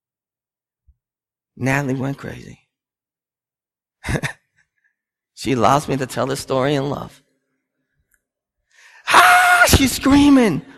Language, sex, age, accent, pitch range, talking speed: English, male, 30-49, American, 160-270 Hz, 85 wpm